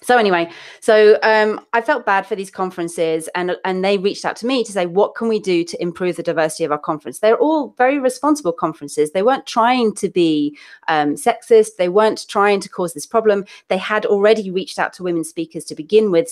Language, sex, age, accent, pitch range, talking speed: English, female, 30-49, British, 165-215 Hz, 220 wpm